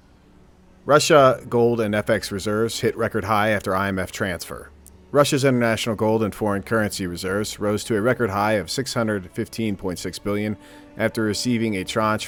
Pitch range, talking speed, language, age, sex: 95-115 Hz, 145 wpm, English, 40-59, male